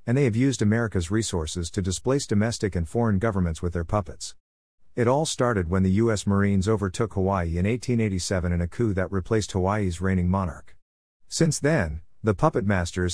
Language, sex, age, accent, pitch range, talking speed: English, male, 50-69, American, 95-120 Hz, 180 wpm